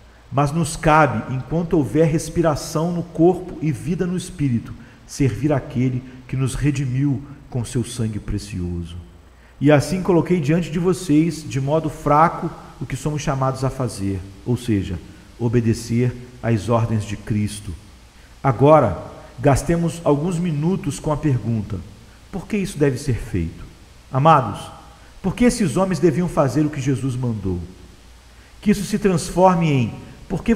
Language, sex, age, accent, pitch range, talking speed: English, male, 50-69, Brazilian, 120-165 Hz, 145 wpm